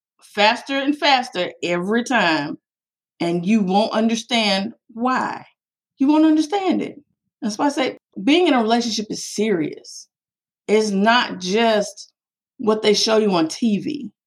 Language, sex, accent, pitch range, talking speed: English, female, American, 195-275 Hz, 140 wpm